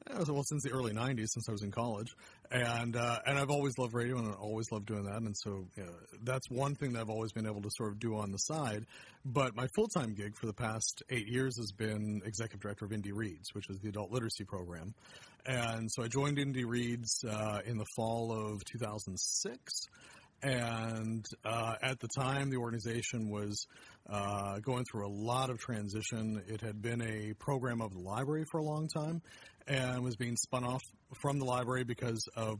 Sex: male